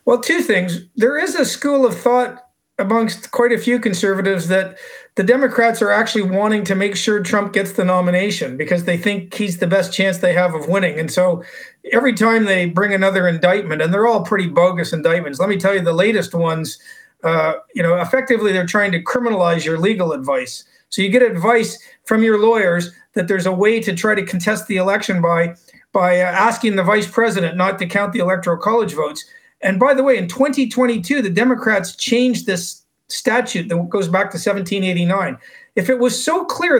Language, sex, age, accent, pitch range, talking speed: English, male, 50-69, American, 180-240 Hz, 200 wpm